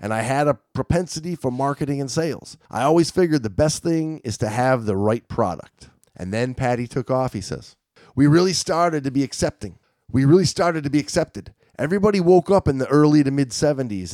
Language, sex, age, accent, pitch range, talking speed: English, male, 30-49, American, 115-150 Hz, 205 wpm